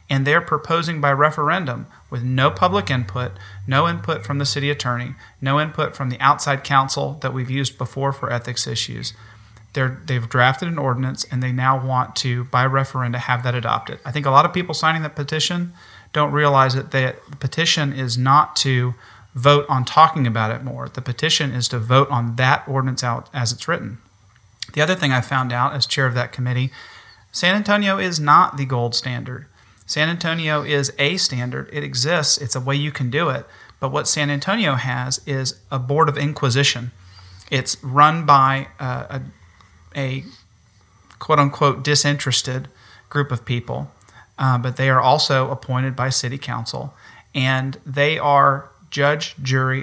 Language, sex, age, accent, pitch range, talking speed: English, male, 40-59, American, 125-145 Hz, 175 wpm